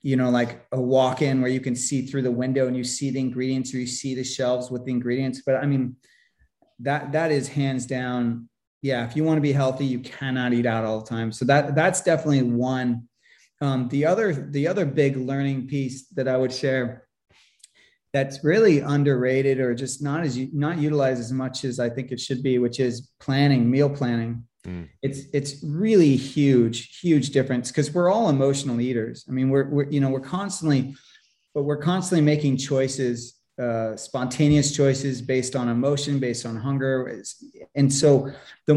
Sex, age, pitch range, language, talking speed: male, 30-49, 125-145 Hz, English, 190 wpm